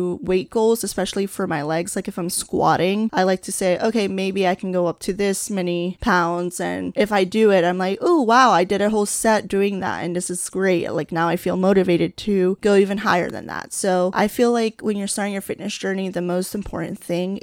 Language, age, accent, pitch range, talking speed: English, 20-39, American, 185-215 Hz, 240 wpm